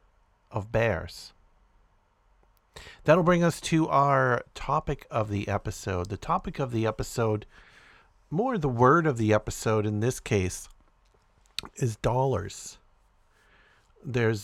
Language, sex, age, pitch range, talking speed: English, male, 50-69, 100-125 Hz, 115 wpm